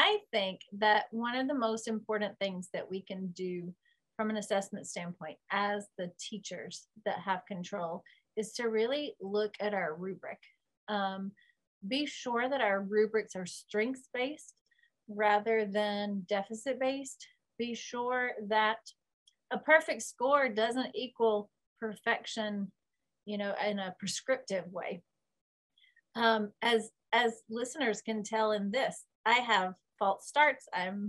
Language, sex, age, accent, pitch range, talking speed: English, female, 30-49, American, 205-245 Hz, 135 wpm